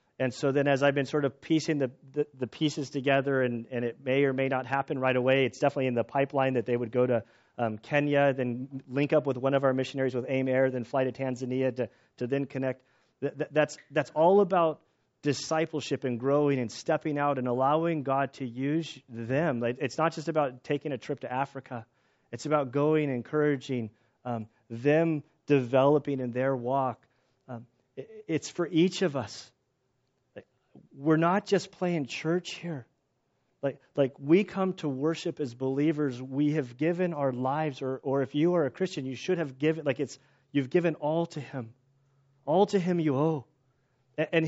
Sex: male